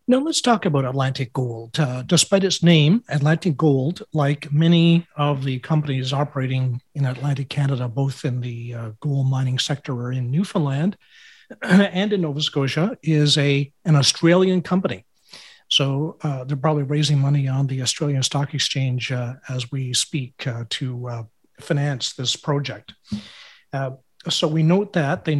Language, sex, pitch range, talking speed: English, male, 130-160 Hz, 155 wpm